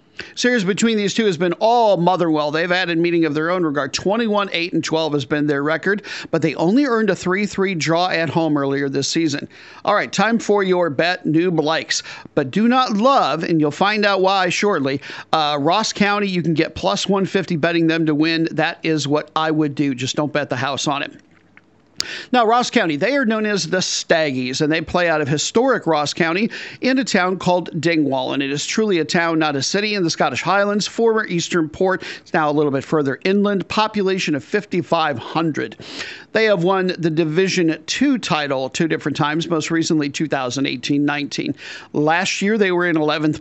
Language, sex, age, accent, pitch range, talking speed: English, male, 50-69, American, 150-195 Hz, 200 wpm